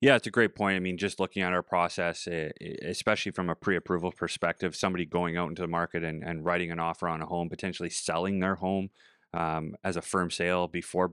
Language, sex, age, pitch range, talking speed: English, male, 30-49, 85-90 Hz, 220 wpm